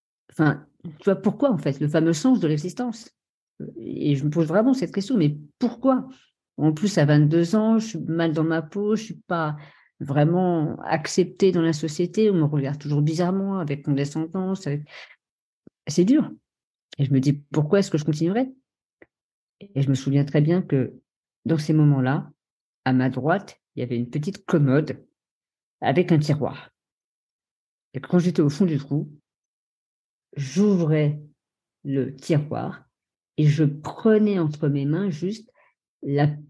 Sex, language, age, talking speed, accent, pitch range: female, French, 40-59, 160 wpm, French, 150-210 Hz